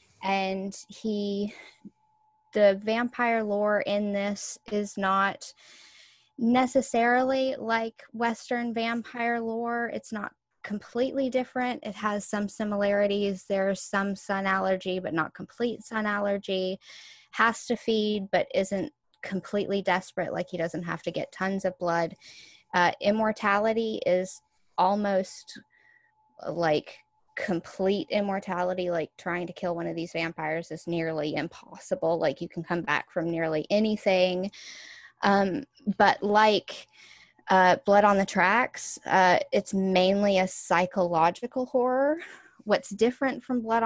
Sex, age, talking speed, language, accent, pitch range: female, 10-29, 125 wpm, English, American, 185-230 Hz